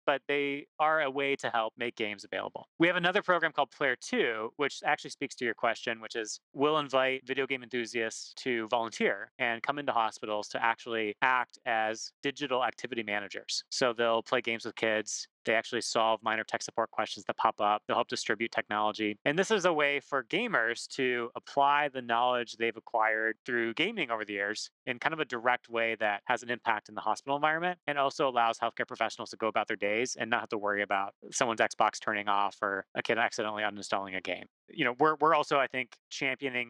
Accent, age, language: American, 30-49, English